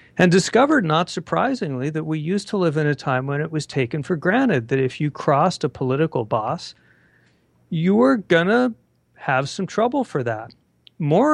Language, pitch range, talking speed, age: English, 125-165 Hz, 185 wpm, 50-69